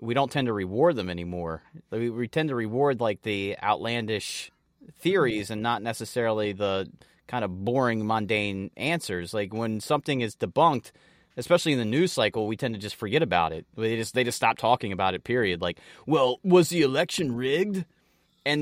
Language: English